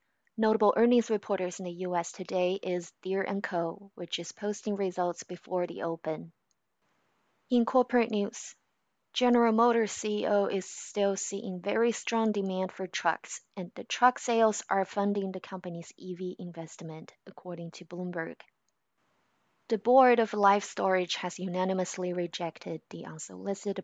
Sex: female